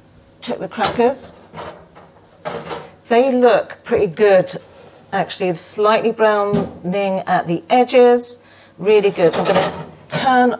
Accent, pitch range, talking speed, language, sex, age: British, 155-205 Hz, 110 wpm, English, female, 40-59